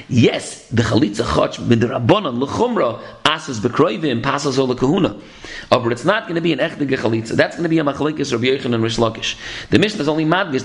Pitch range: 115-150 Hz